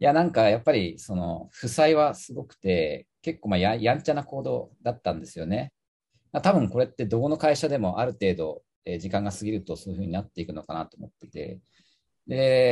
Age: 40-59